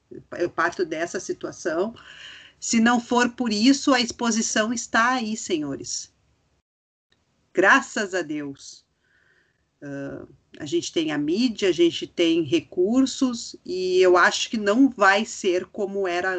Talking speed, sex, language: 130 wpm, female, Portuguese